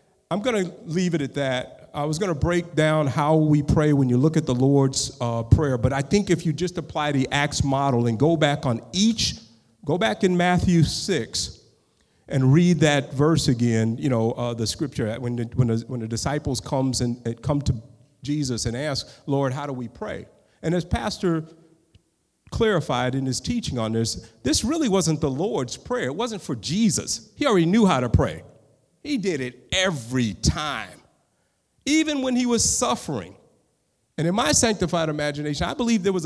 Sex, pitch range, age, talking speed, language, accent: male, 125-170 Hz, 50-69, 190 wpm, English, American